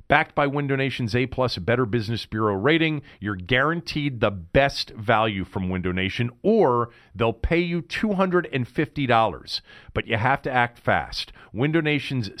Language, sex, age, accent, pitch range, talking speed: English, male, 40-59, American, 110-150 Hz, 135 wpm